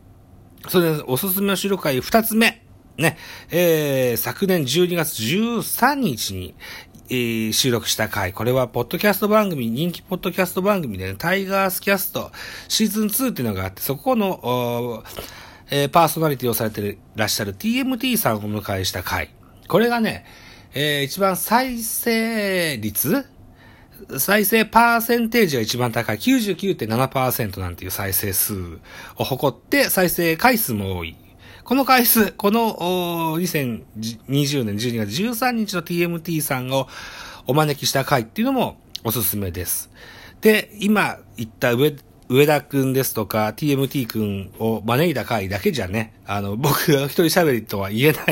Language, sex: Japanese, male